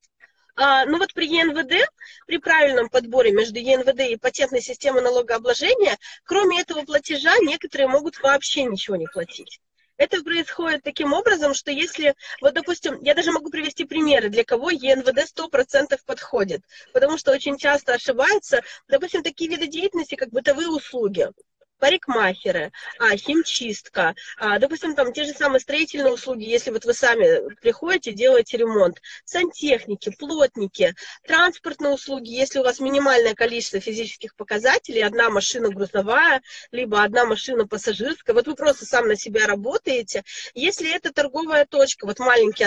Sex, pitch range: female, 250-340 Hz